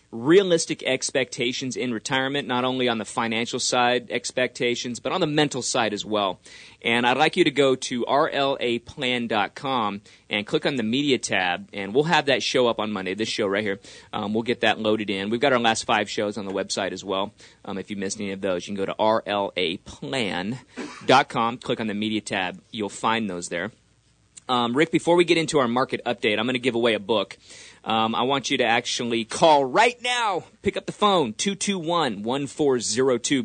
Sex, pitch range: male, 110-130 Hz